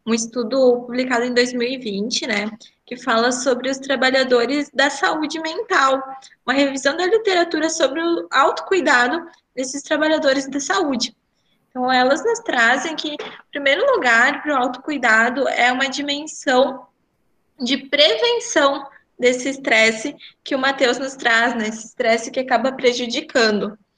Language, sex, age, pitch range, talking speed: Portuguese, female, 10-29, 240-295 Hz, 135 wpm